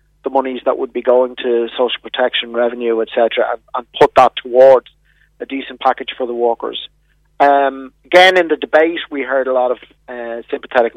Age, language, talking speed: 50-69, English, 185 wpm